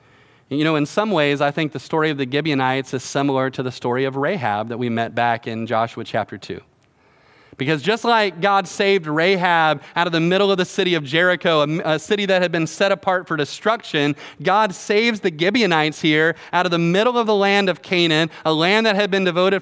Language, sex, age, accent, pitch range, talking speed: English, male, 30-49, American, 140-195 Hz, 215 wpm